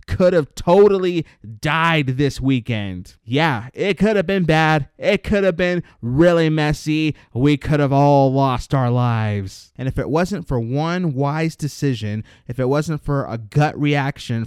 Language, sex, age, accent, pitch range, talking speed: English, male, 20-39, American, 125-170 Hz, 165 wpm